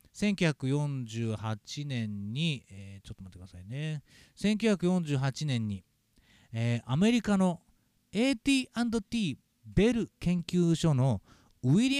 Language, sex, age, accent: Japanese, male, 40-59, native